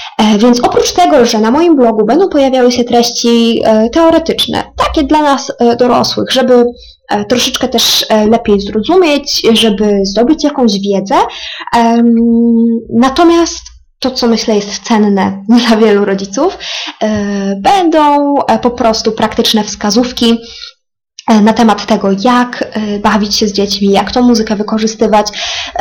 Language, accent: English, Polish